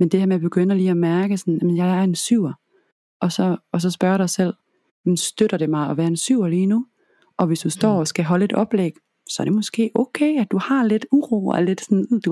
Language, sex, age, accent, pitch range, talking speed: Danish, female, 30-49, native, 155-195 Hz, 260 wpm